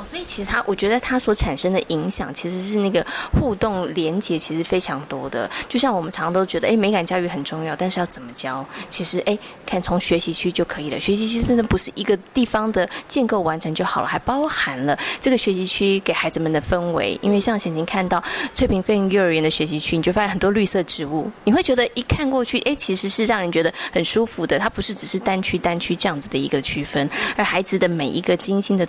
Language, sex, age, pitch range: Chinese, female, 20-39, 175-235 Hz